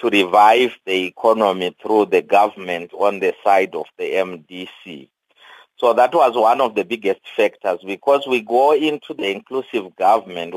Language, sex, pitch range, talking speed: English, male, 100-170 Hz, 160 wpm